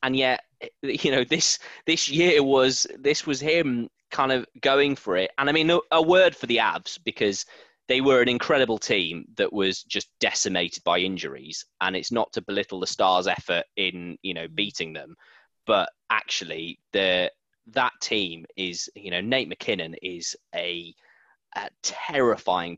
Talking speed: 165 wpm